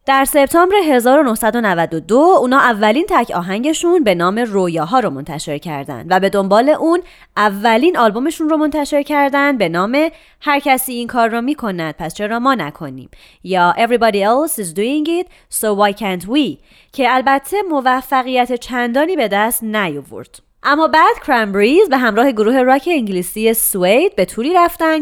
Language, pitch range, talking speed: Persian, 190-295 Hz, 155 wpm